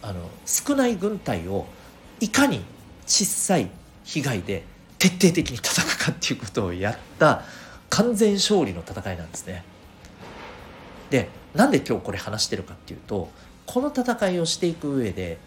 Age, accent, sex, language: 40-59, native, male, Japanese